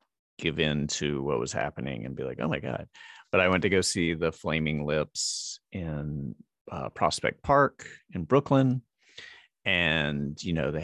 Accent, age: American, 30-49